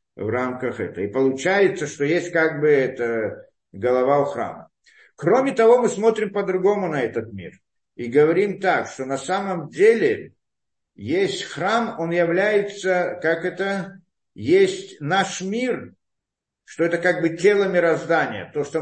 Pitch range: 170-260 Hz